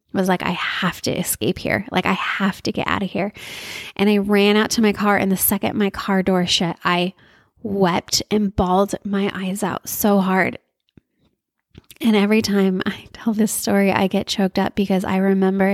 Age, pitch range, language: 20-39, 200-250 Hz, English